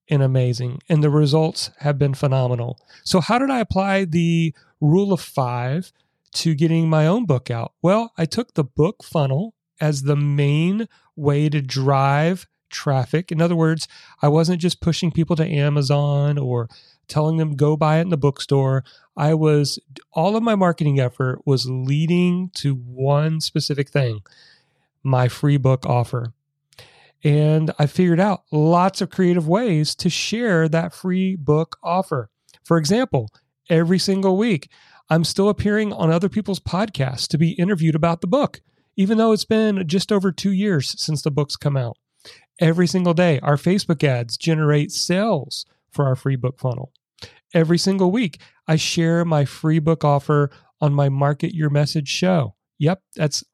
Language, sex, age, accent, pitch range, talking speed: English, male, 40-59, American, 145-180 Hz, 165 wpm